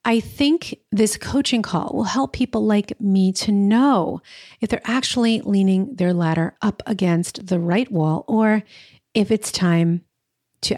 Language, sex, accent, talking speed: English, female, American, 155 wpm